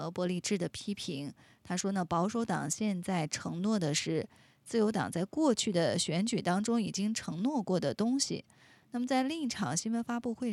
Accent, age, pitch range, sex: native, 20-39, 180-220 Hz, female